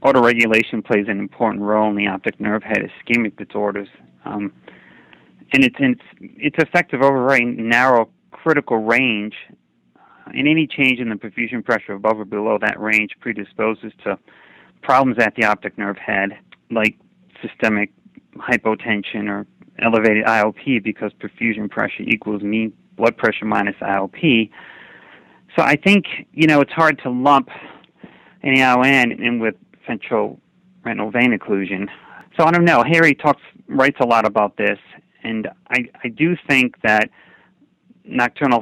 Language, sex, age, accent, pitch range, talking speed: English, male, 30-49, American, 105-135 Hz, 145 wpm